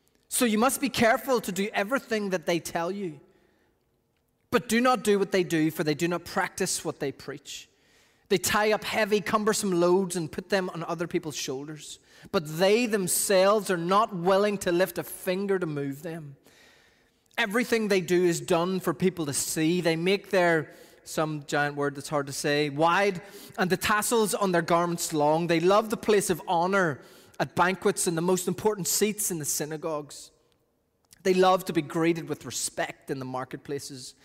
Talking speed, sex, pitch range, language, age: 185 wpm, male, 150-200 Hz, English, 20-39